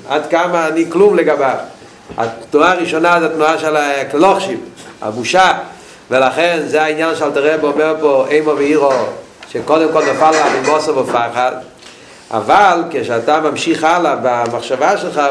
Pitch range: 150-175 Hz